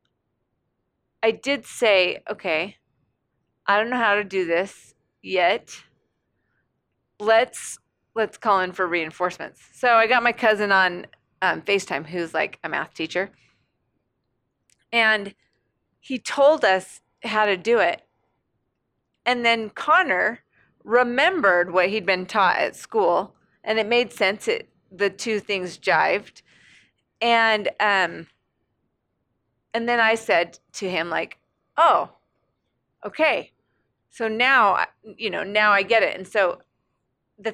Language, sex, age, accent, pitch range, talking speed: English, female, 30-49, American, 180-240 Hz, 125 wpm